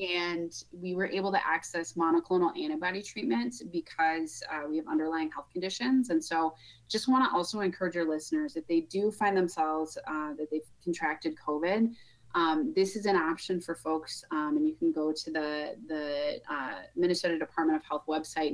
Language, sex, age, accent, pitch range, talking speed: English, female, 30-49, American, 155-220 Hz, 180 wpm